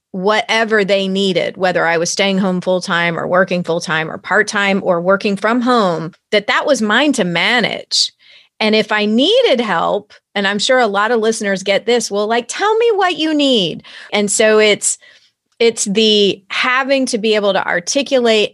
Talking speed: 180 wpm